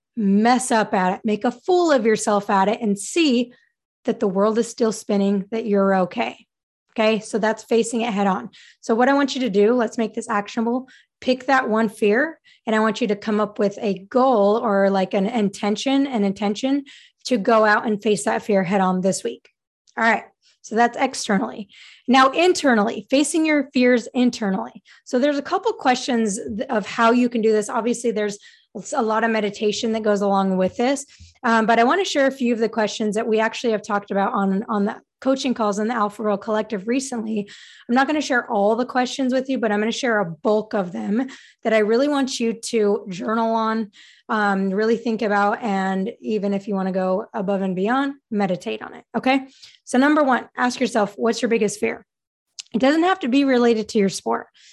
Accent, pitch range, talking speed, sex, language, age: American, 205-250 Hz, 215 wpm, female, English, 20-39